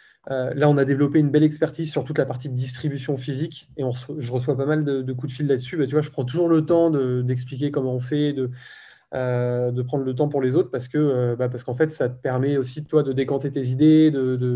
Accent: French